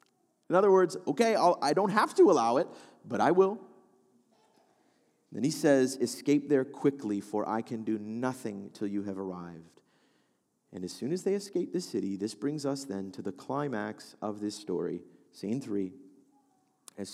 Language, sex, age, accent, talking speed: English, male, 30-49, American, 170 wpm